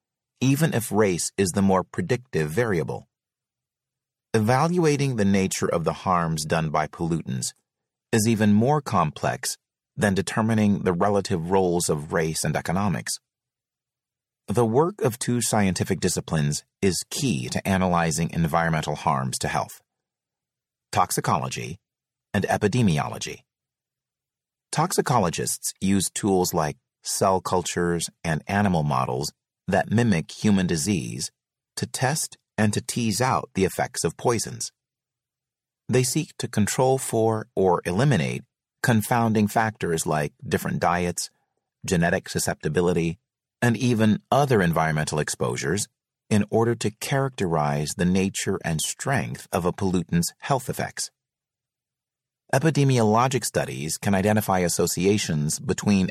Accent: American